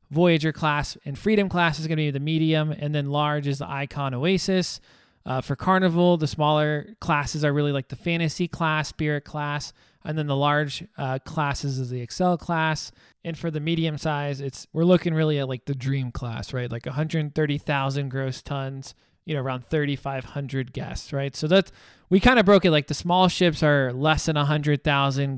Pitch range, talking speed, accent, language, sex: 140-165 Hz, 195 wpm, American, English, male